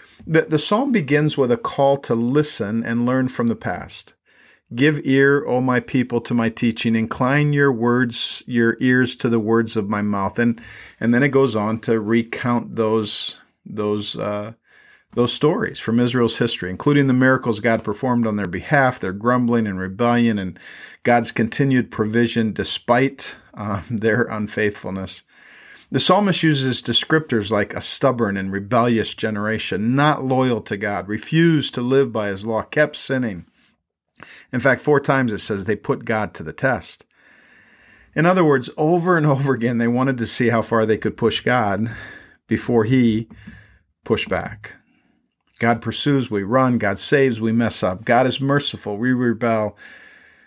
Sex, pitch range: male, 110-135 Hz